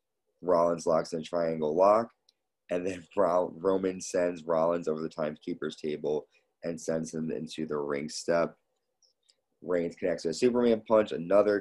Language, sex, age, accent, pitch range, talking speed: English, male, 30-49, American, 80-95 Hz, 150 wpm